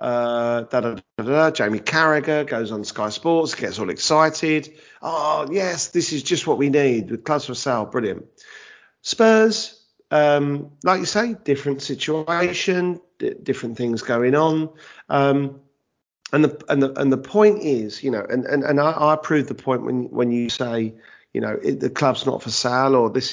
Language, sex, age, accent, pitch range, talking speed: English, male, 40-59, British, 125-180 Hz, 190 wpm